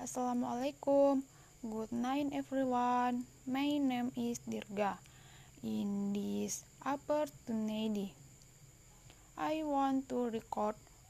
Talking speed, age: 80 wpm, 10-29